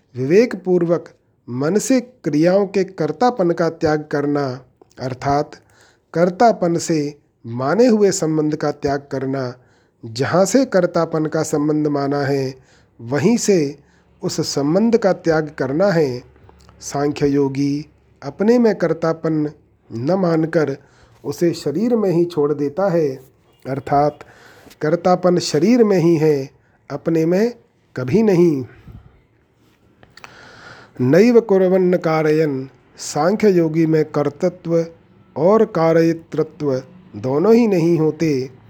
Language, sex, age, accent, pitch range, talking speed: Hindi, male, 40-59, native, 140-175 Hz, 105 wpm